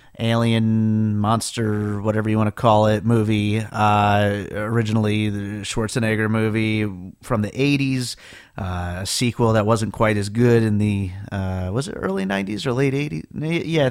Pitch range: 110-145 Hz